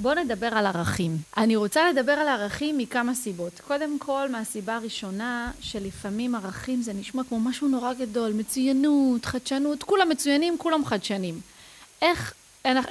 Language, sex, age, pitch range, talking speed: Hebrew, female, 30-49, 210-280 Hz, 140 wpm